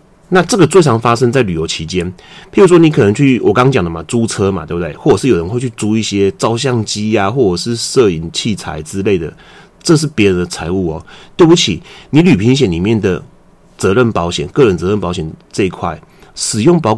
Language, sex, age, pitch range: Chinese, male, 30-49, 95-135 Hz